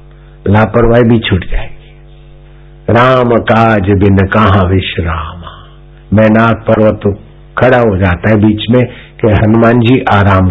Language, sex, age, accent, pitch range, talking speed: Hindi, male, 60-79, native, 100-130 Hz, 125 wpm